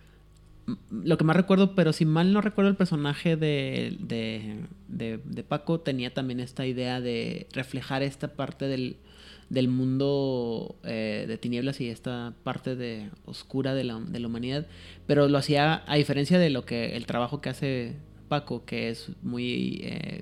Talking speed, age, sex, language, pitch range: 170 wpm, 30-49, male, Spanish, 120-150 Hz